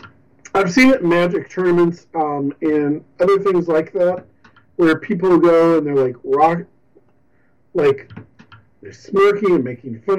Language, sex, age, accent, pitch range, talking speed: English, male, 40-59, American, 135-205 Hz, 145 wpm